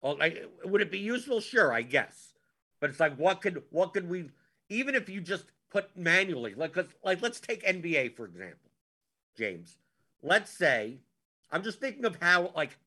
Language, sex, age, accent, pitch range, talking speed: English, male, 50-69, American, 145-190 Hz, 175 wpm